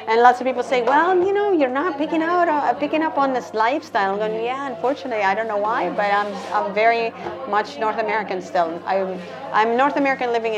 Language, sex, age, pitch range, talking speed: English, female, 40-59, 190-245 Hz, 225 wpm